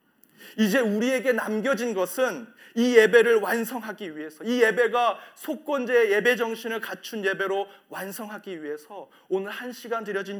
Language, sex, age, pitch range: Korean, male, 30-49, 150-225 Hz